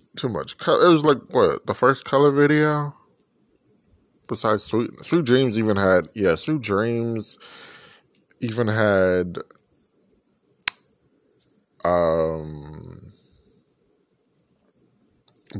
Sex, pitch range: male, 95-145 Hz